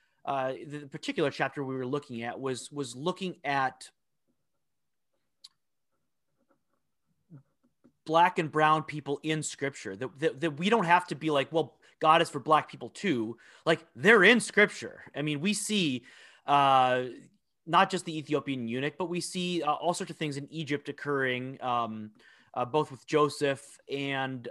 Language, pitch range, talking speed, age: English, 125-155 Hz, 160 wpm, 30-49